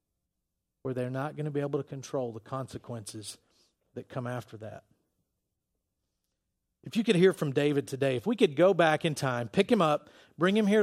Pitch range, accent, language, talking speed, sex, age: 145-215 Hz, American, English, 195 wpm, male, 40-59